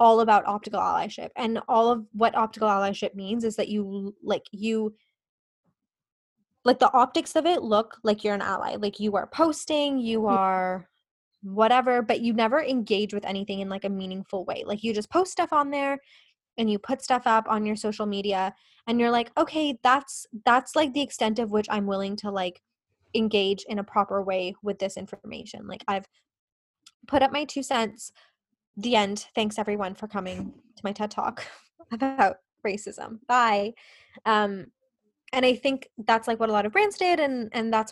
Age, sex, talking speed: 10-29, female, 185 wpm